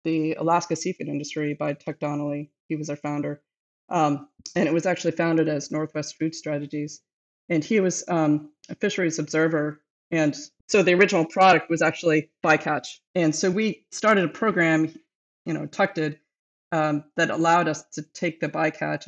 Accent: American